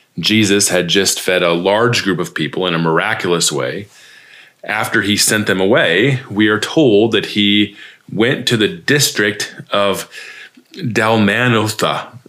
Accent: American